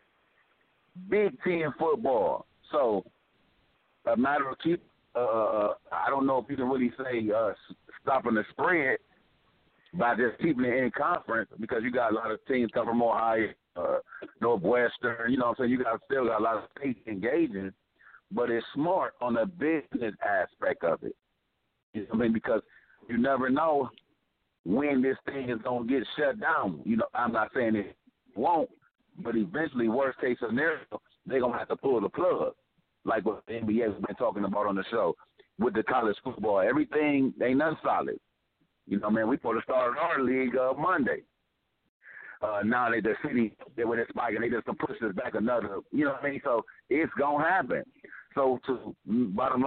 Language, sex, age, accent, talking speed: English, male, 60-79, American, 195 wpm